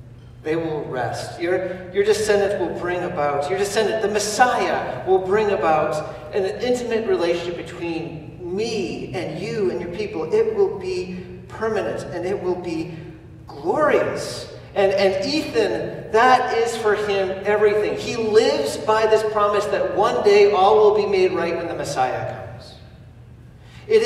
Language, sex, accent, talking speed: English, male, American, 150 wpm